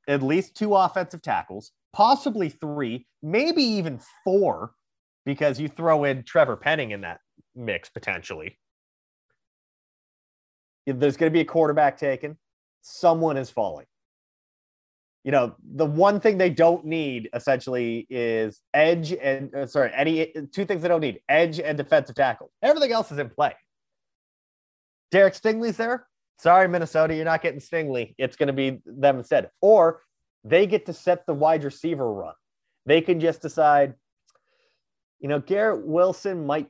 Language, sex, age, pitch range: English, male, 30-49, 130-165 Hz